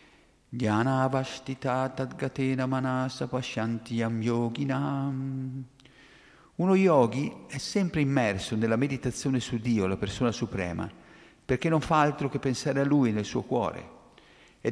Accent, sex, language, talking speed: native, male, Italian, 100 wpm